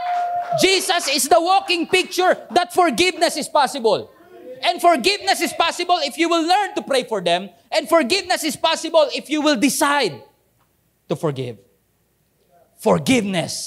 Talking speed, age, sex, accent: 140 wpm, 20-39, male, Filipino